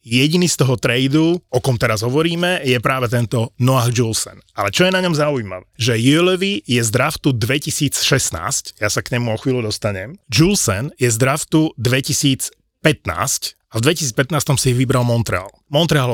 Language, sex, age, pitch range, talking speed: Slovak, male, 30-49, 120-150 Hz, 165 wpm